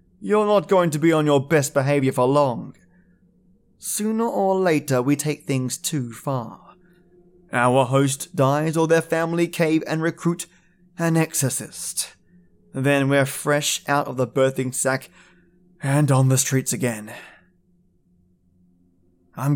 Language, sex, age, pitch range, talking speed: English, male, 20-39, 120-165 Hz, 135 wpm